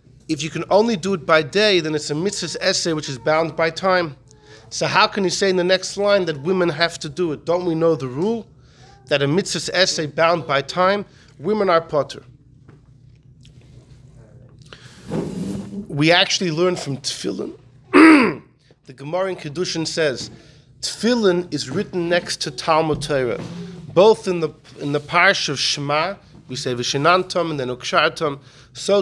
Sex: male